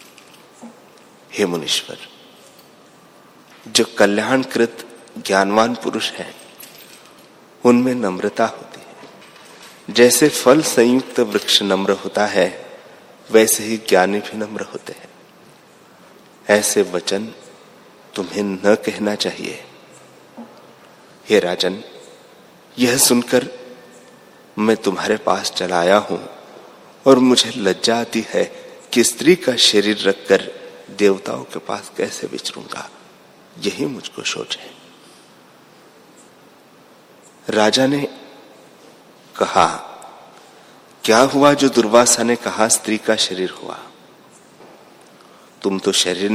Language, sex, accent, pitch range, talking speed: Hindi, male, native, 100-125 Hz, 100 wpm